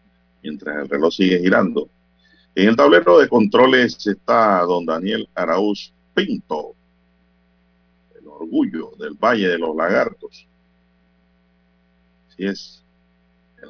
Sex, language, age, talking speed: male, Spanish, 50-69, 110 wpm